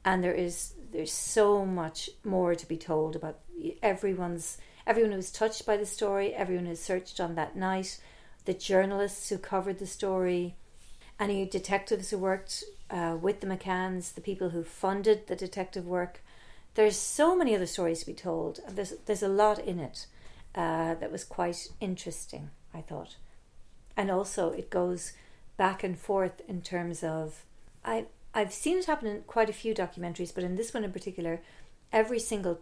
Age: 40-59